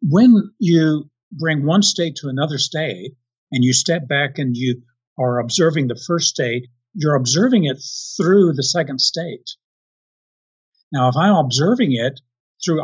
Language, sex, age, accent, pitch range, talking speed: English, male, 50-69, American, 125-170 Hz, 150 wpm